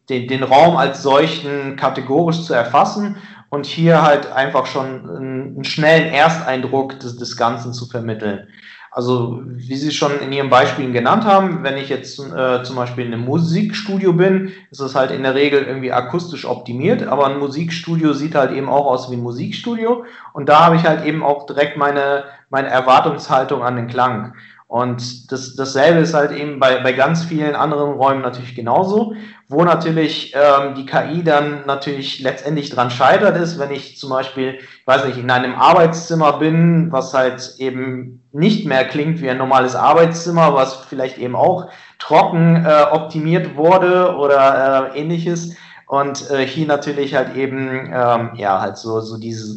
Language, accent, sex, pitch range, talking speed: German, German, male, 130-155 Hz, 170 wpm